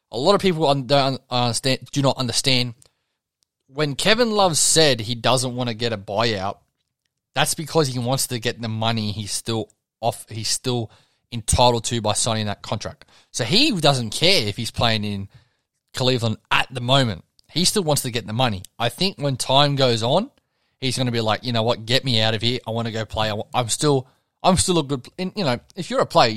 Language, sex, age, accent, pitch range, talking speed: English, male, 20-39, Australian, 115-150 Hz, 215 wpm